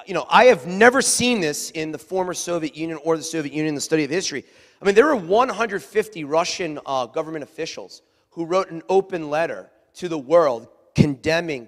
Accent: American